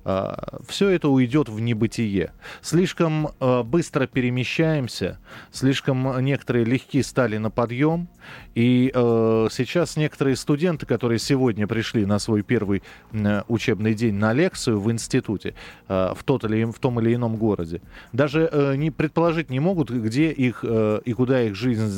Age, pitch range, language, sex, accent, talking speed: 20-39, 105-145 Hz, Russian, male, native, 150 wpm